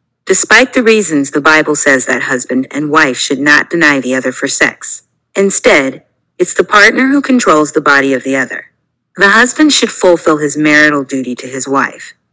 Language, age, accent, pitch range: English, 40-59, American, 140-195 Hz